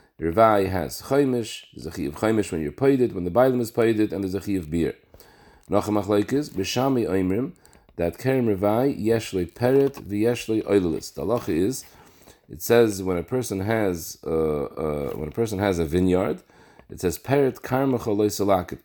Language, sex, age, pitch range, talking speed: English, male, 40-59, 95-120 Hz, 170 wpm